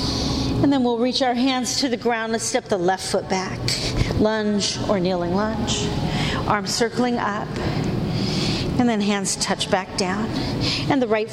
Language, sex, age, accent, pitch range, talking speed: English, female, 50-69, American, 175-240 Hz, 165 wpm